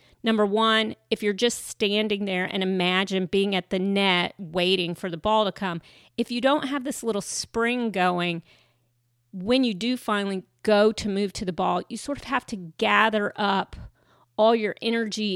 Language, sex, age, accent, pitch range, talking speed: English, female, 40-59, American, 180-215 Hz, 185 wpm